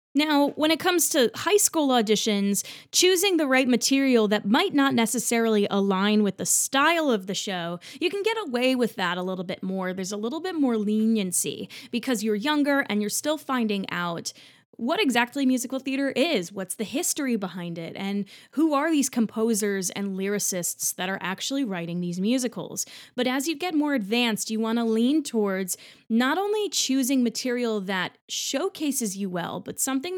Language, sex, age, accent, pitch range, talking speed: English, female, 20-39, American, 195-260 Hz, 180 wpm